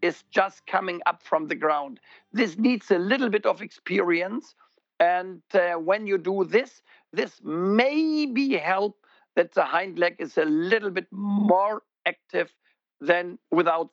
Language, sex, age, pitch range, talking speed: English, male, 50-69, 170-220 Hz, 155 wpm